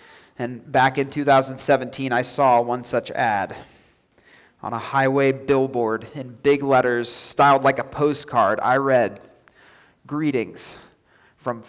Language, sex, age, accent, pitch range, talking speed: English, male, 30-49, American, 130-175 Hz, 125 wpm